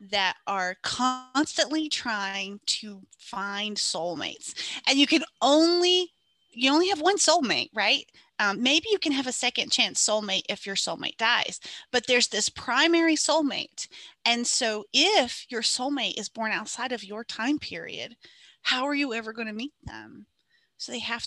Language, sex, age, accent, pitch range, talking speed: English, female, 30-49, American, 220-315 Hz, 160 wpm